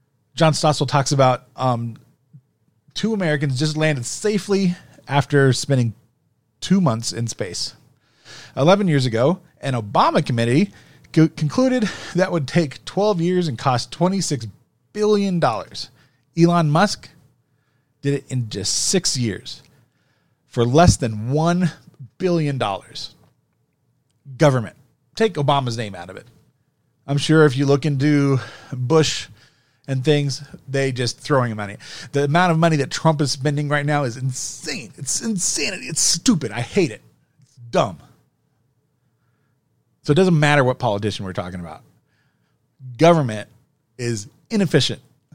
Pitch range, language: 125-165 Hz, English